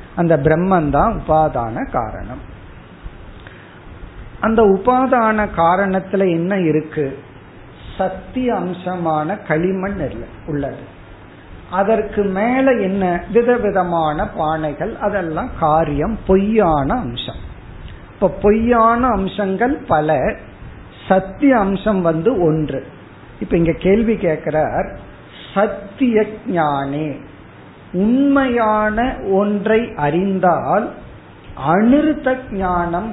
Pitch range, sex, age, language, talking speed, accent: 155-220 Hz, male, 50-69, Tamil, 65 wpm, native